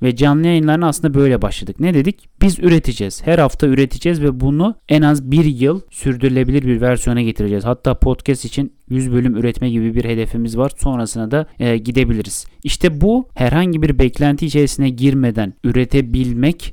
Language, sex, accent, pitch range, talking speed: Turkish, male, native, 115-145 Hz, 160 wpm